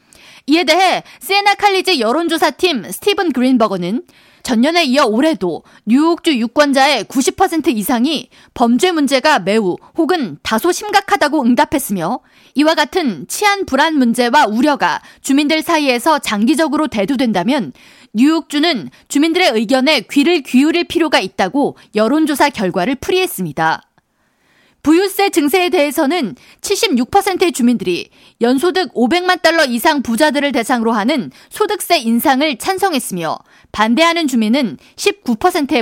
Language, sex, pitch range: Korean, female, 245-340 Hz